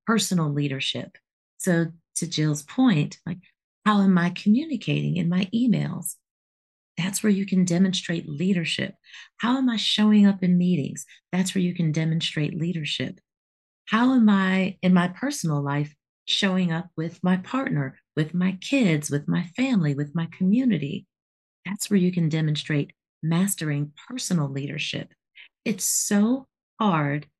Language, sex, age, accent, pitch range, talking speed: English, female, 40-59, American, 155-200 Hz, 140 wpm